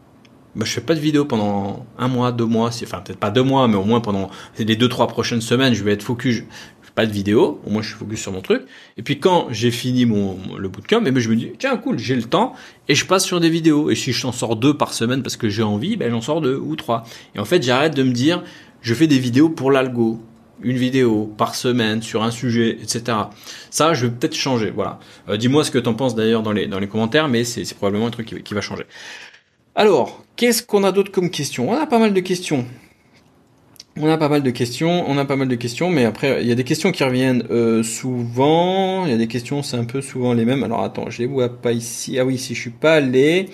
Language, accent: French, French